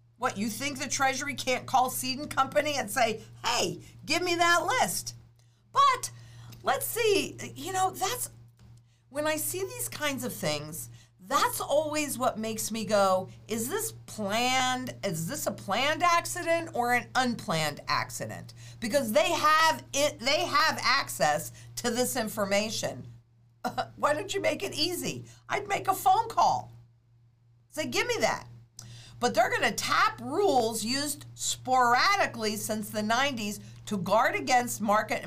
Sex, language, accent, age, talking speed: female, English, American, 50-69, 150 wpm